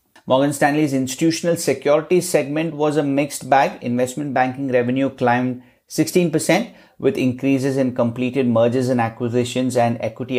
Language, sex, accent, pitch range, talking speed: English, male, Indian, 120-145 Hz, 135 wpm